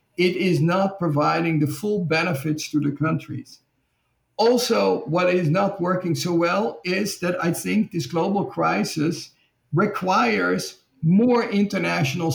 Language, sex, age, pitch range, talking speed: English, male, 50-69, 150-180 Hz, 130 wpm